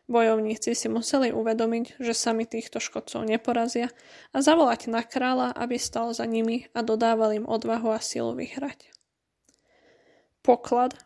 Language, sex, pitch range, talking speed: Slovak, female, 225-250 Hz, 135 wpm